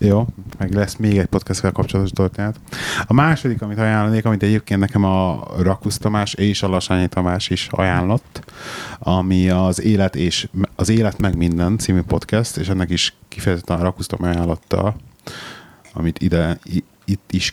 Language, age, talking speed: Hungarian, 30-49, 155 wpm